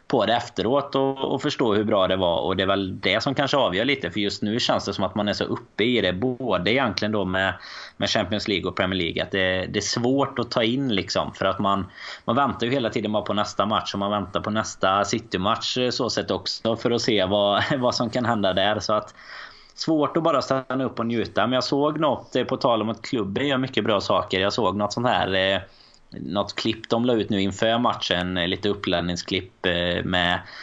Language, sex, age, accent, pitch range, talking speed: Swedish, male, 20-39, native, 95-120 Hz, 235 wpm